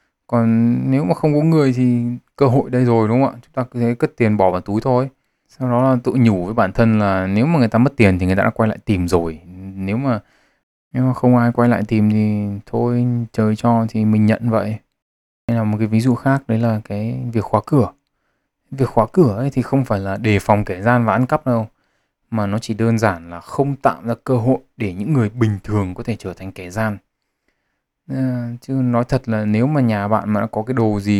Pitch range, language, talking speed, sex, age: 100-125 Hz, Vietnamese, 245 wpm, male, 20-39